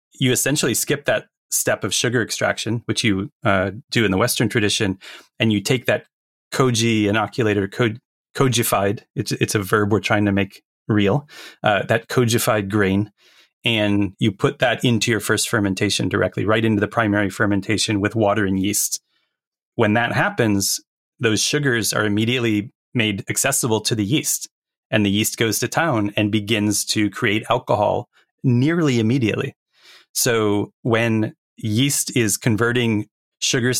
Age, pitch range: 30-49, 100-120 Hz